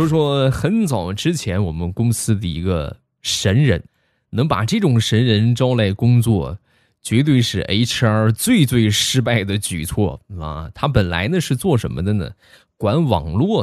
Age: 20-39